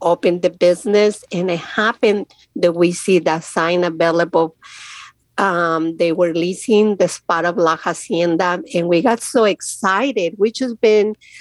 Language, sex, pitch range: English, female, 175-215 Hz